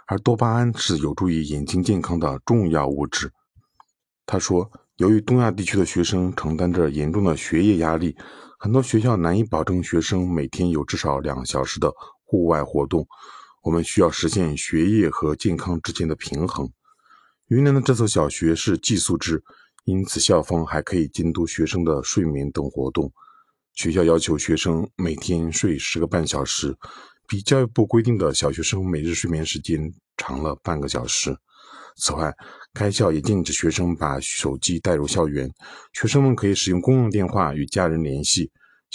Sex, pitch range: male, 80-105 Hz